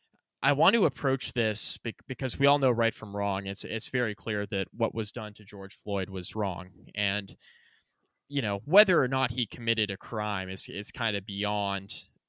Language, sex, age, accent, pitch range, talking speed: English, male, 20-39, American, 100-120 Hz, 195 wpm